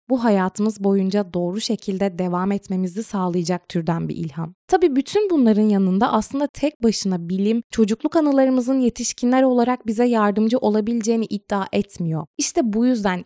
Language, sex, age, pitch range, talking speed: Turkish, female, 20-39, 190-245 Hz, 140 wpm